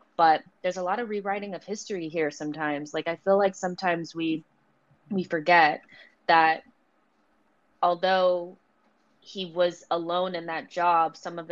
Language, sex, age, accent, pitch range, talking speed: English, female, 20-39, American, 165-180 Hz, 145 wpm